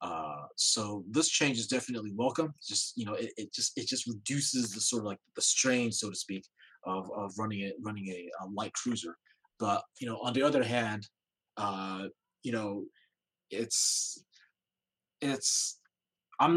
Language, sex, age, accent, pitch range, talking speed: English, male, 20-39, American, 110-145 Hz, 170 wpm